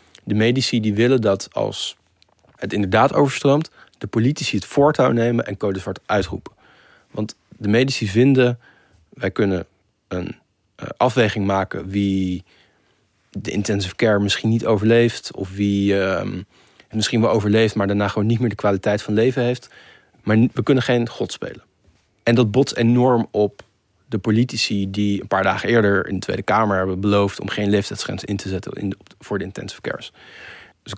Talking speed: 165 wpm